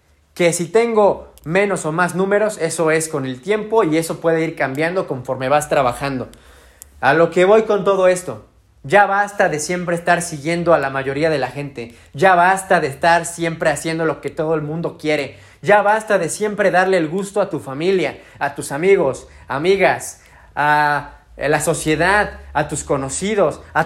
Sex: male